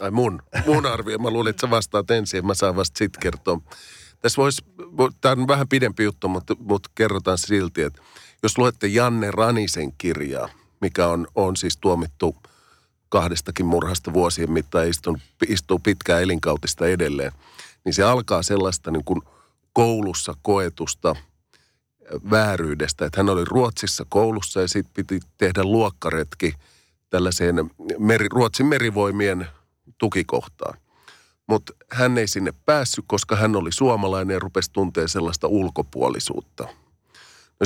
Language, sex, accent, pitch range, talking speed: Finnish, male, native, 85-110 Hz, 130 wpm